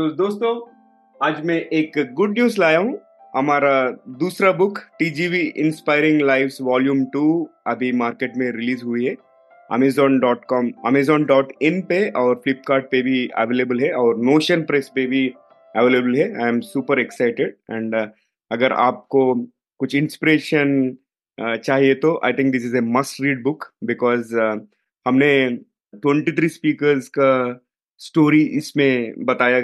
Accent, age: native, 30-49